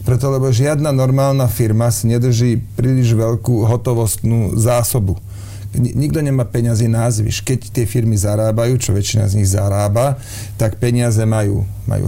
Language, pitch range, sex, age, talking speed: Slovak, 105-125 Hz, male, 40-59, 140 wpm